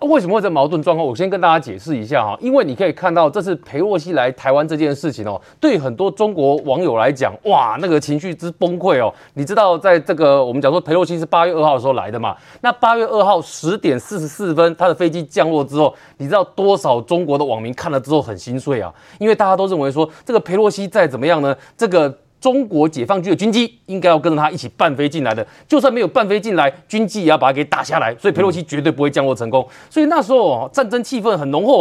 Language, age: Chinese, 30-49